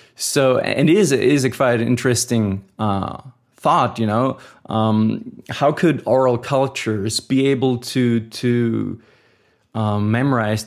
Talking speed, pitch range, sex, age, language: 125 wpm, 110-125 Hz, male, 20-39, German